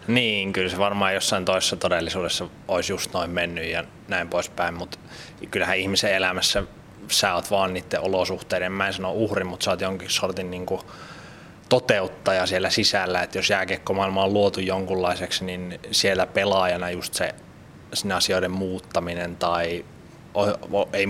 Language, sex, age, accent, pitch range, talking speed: Finnish, male, 20-39, native, 90-100 Hz, 150 wpm